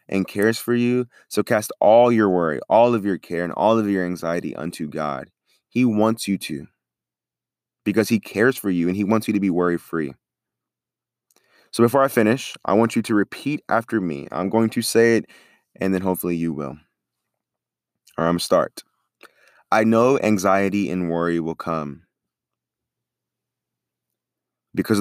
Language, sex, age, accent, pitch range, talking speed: English, male, 20-39, American, 85-115 Hz, 170 wpm